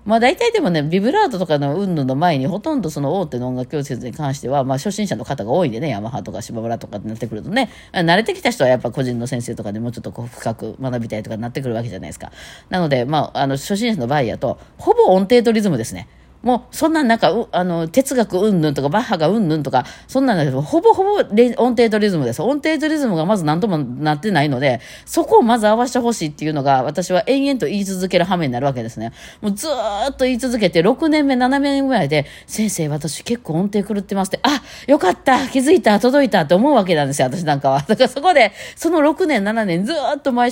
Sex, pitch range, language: female, 145-240 Hz, Japanese